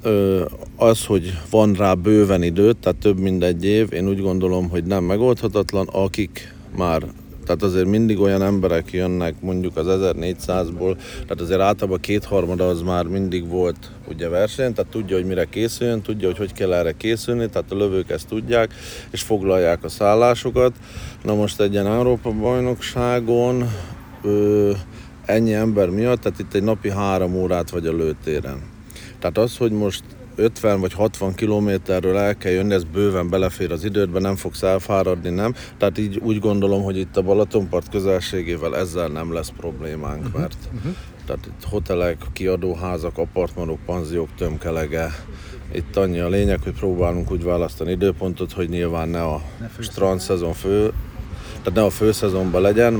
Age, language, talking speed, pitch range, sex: 50-69, Hungarian, 160 wpm, 90-105 Hz, male